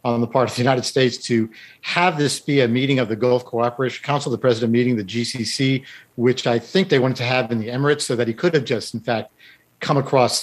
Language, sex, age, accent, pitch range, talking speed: English, male, 50-69, American, 115-140 Hz, 245 wpm